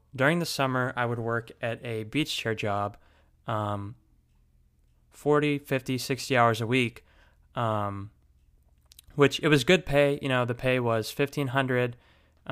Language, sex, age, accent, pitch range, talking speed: English, male, 20-39, American, 105-130 Hz, 145 wpm